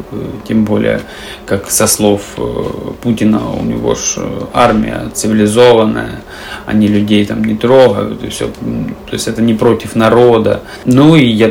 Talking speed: 135 wpm